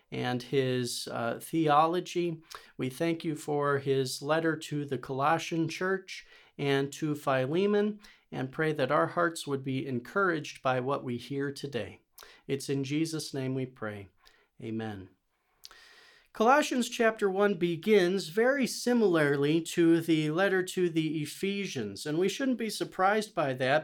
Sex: male